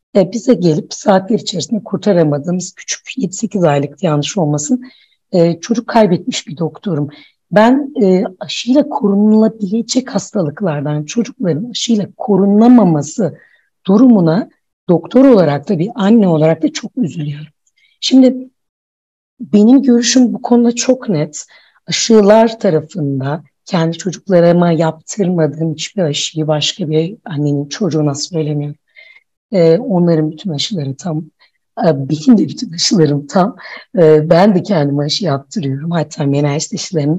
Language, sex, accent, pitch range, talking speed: Turkish, female, native, 155-220 Hz, 110 wpm